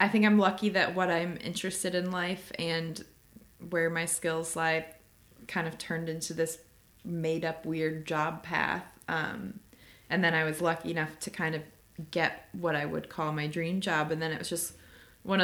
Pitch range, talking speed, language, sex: 155-180 Hz, 190 wpm, English, female